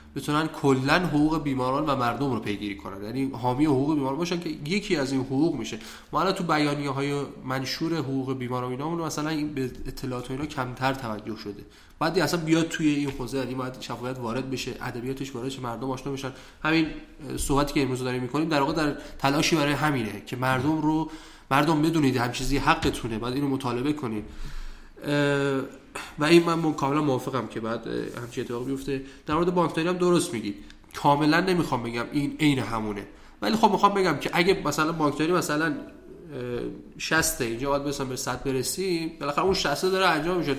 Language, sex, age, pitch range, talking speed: Persian, male, 20-39, 130-160 Hz, 175 wpm